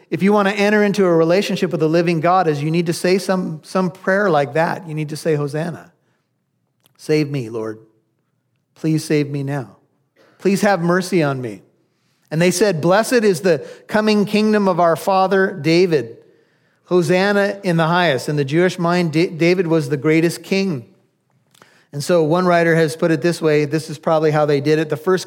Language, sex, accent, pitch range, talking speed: English, male, American, 155-210 Hz, 195 wpm